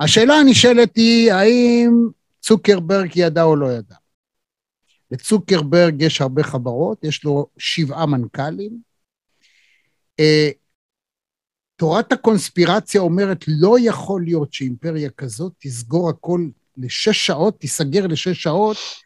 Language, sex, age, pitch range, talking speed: Hebrew, male, 60-79, 150-200 Hz, 100 wpm